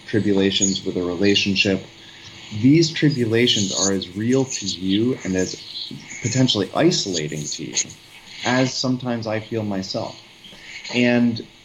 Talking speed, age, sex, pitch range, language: 120 wpm, 30-49, male, 95-120 Hz, English